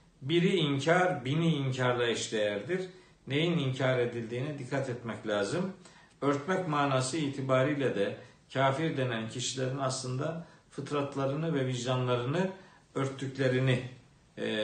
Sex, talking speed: male, 100 wpm